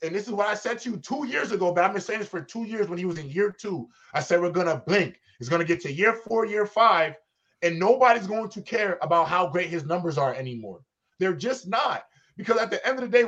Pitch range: 175-225 Hz